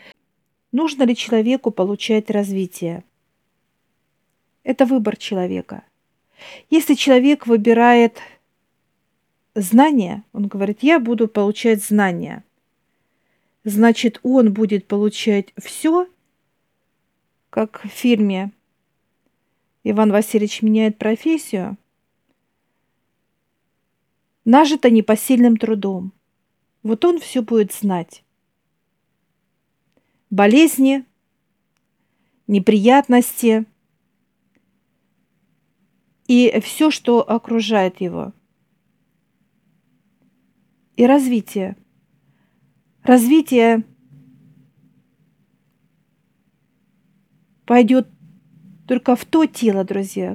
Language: Russian